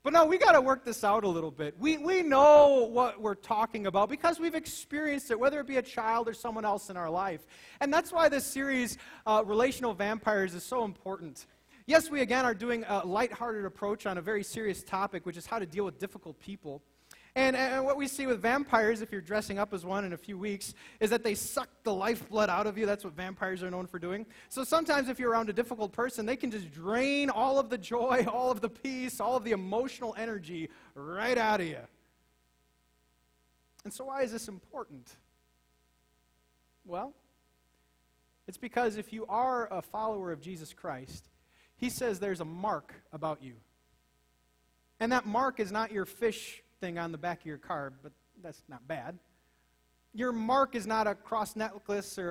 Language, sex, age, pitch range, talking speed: English, male, 30-49, 175-240 Hz, 205 wpm